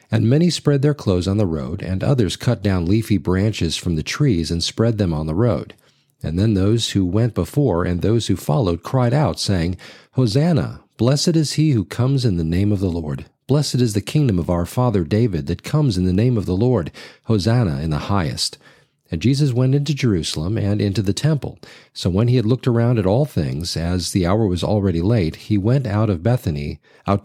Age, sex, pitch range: 40-59, male, 90-130 Hz